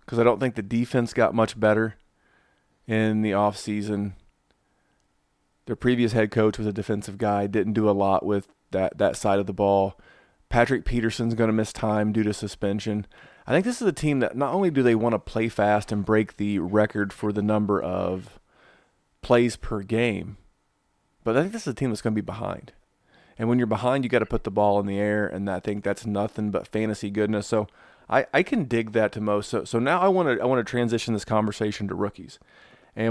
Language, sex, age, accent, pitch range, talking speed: English, male, 30-49, American, 105-115 Hz, 220 wpm